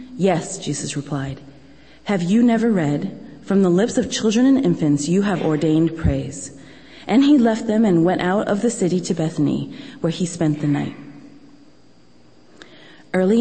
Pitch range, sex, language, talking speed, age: 155-210 Hz, female, English, 160 wpm, 30-49